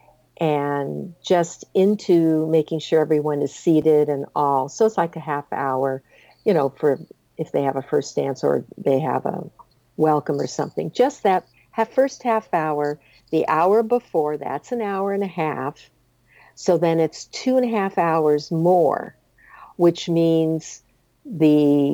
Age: 50-69